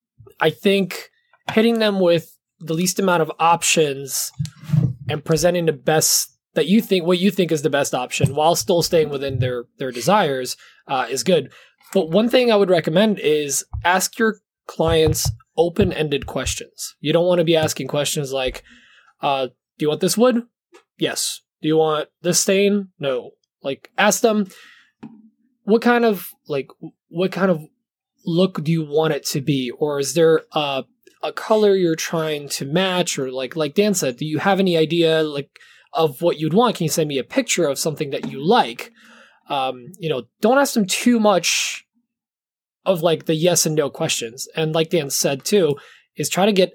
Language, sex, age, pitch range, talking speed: English, male, 20-39, 150-200 Hz, 185 wpm